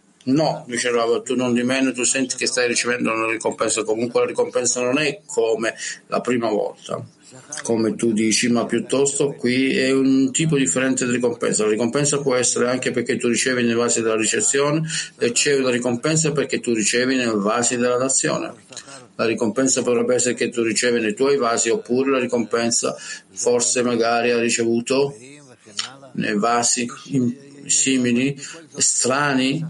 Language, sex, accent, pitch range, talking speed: Italian, male, native, 115-140 Hz, 160 wpm